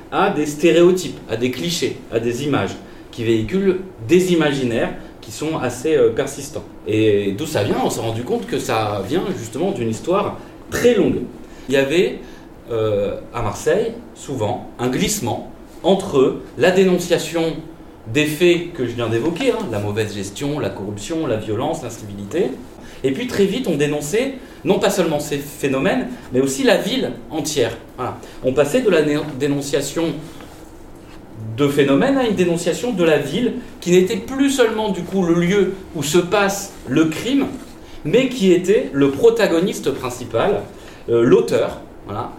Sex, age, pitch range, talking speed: male, 30-49, 120-185 Hz, 160 wpm